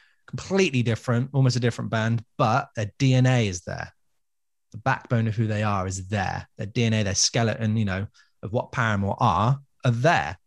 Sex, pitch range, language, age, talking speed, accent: male, 105-130 Hz, English, 20-39, 180 wpm, British